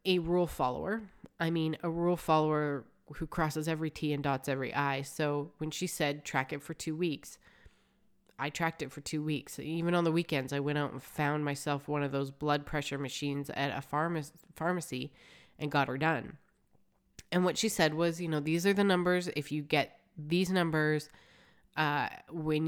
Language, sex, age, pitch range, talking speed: English, female, 20-39, 145-175 Hz, 195 wpm